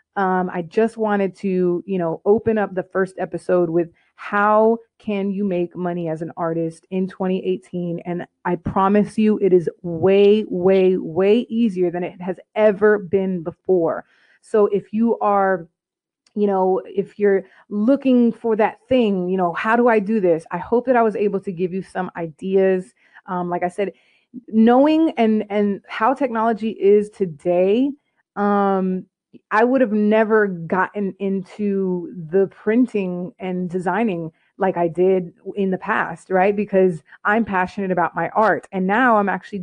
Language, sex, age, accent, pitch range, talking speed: English, female, 30-49, American, 180-215 Hz, 165 wpm